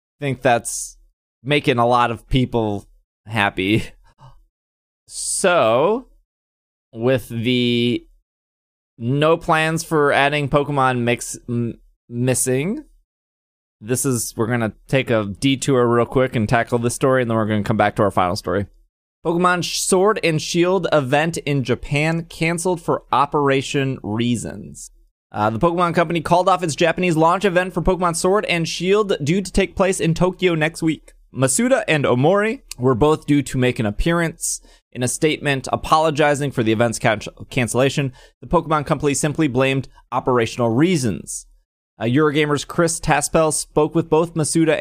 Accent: American